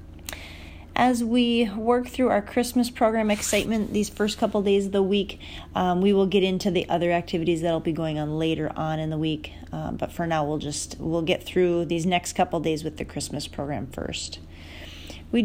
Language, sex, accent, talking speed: English, female, American, 195 wpm